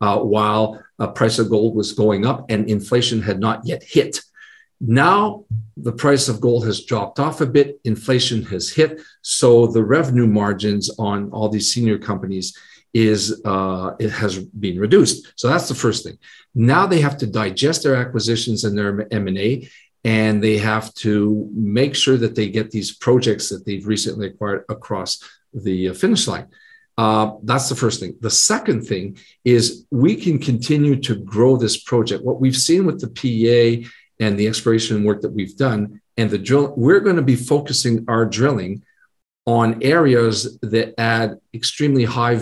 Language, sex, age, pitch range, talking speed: English, male, 50-69, 105-130 Hz, 180 wpm